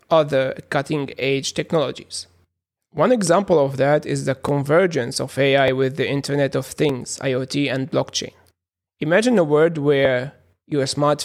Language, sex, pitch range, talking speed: English, male, 135-155 Hz, 140 wpm